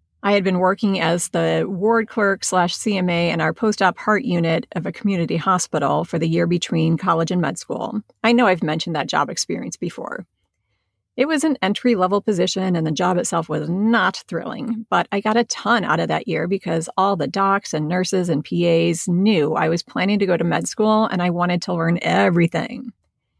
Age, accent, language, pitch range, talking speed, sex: 40-59, American, English, 170-215 Hz, 205 wpm, female